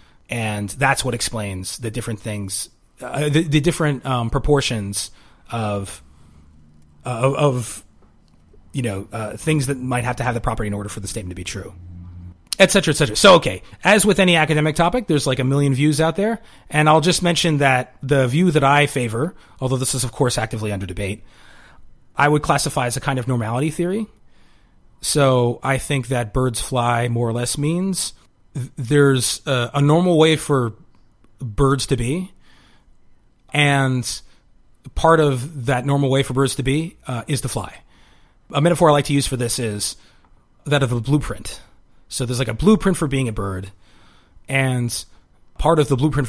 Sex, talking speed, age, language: male, 180 wpm, 30-49, English